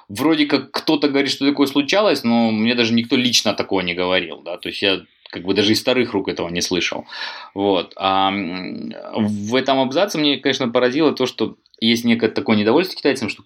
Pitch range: 110-140 Hz